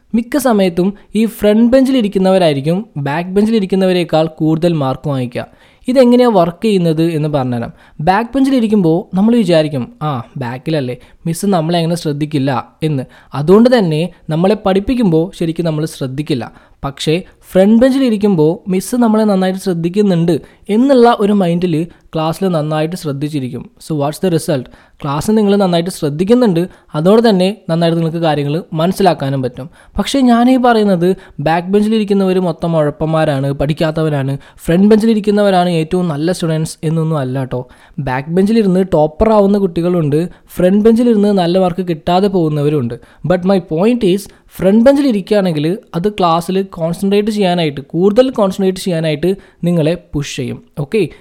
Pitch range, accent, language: 155-205 Hz, native, Malayalam